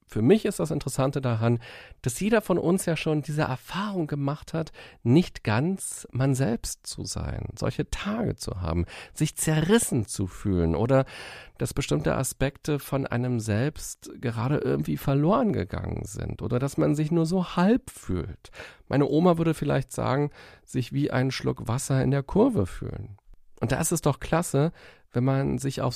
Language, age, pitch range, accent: German, 40-59, 105-150 Hz, German